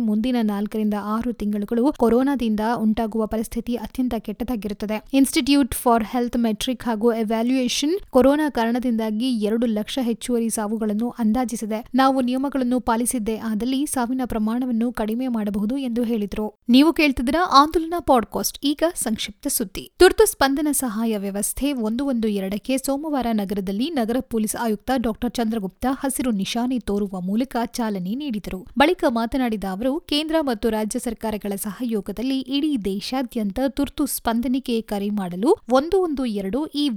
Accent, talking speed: native, 120 wpm